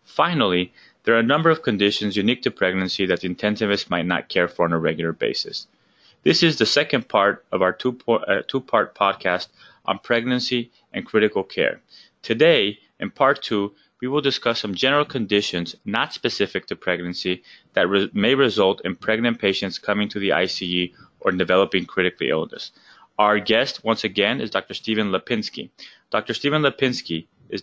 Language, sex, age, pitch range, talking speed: English, male, 20-39, 95-115 Hz, 170 wpm